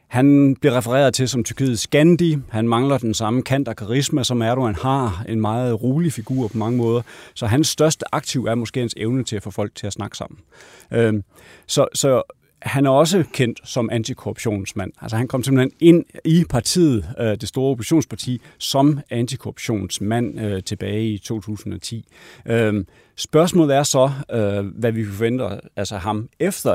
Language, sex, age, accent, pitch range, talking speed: Danish, male, 30-49, native, 110-140 Hz, 175 wpm